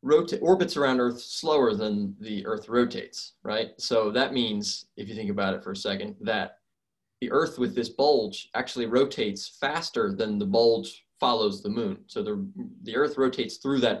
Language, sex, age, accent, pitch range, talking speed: English, male, 20-39, American, 115-175 Hz, 185 wpm